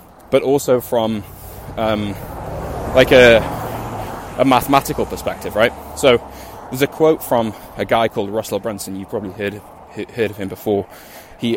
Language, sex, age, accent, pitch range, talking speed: English, male, 10-29, British, 105-130 Hz, 150 wpm